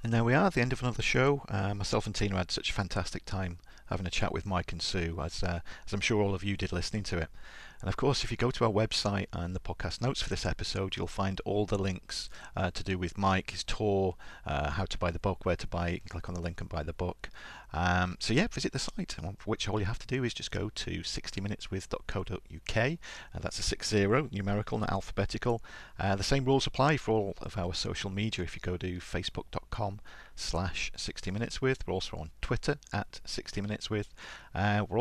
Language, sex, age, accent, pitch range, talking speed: English, male, 40-59, British, 90-110 Hz, 230 wpm